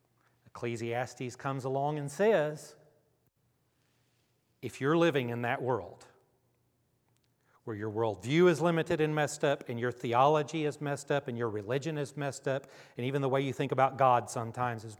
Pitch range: 120-150 Hz